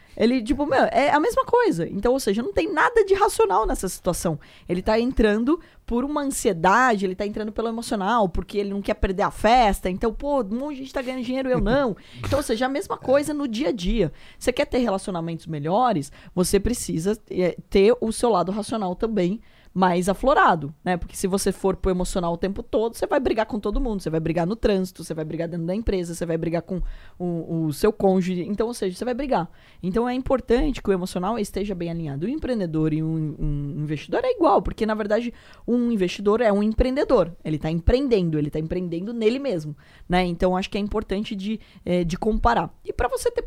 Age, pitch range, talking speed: 20-39, 180-250 Hz, 220 wpm